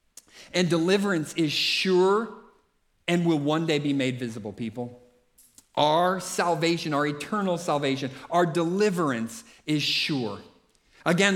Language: English